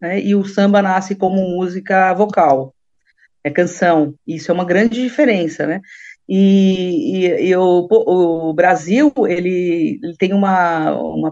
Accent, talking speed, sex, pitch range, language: Brazilian, 135 wpm, female, 165-195 Hz, Portuguese